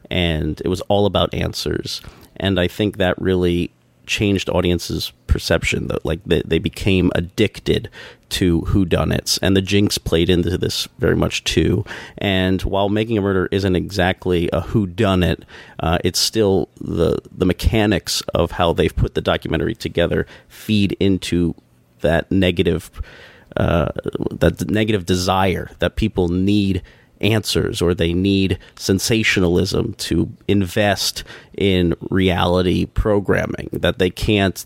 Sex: male